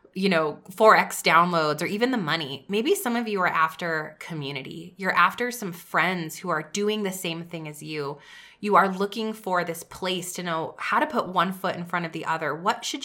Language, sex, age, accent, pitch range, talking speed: English, female, 20-39, American, 170-230 Hz, 215 wpm